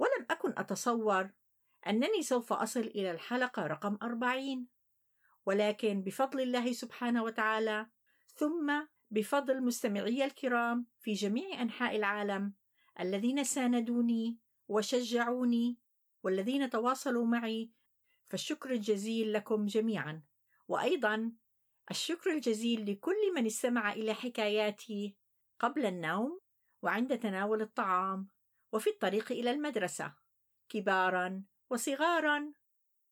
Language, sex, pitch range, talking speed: Arabic, female, 200-245 Hz, 90 wpm